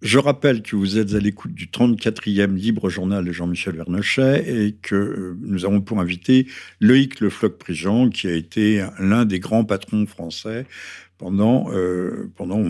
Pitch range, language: 105-125 Hz, French